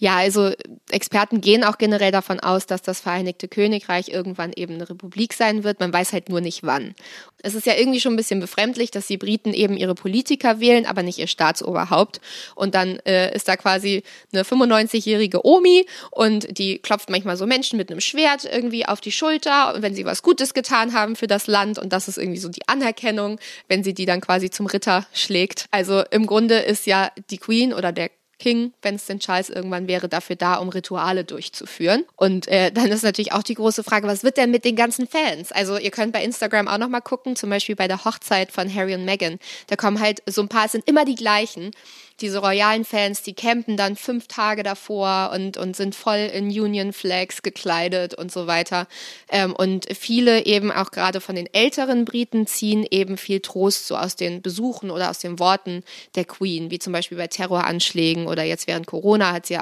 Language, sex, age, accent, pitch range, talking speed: German, female, 20-39, German, 185-220 Hz, 210 wpm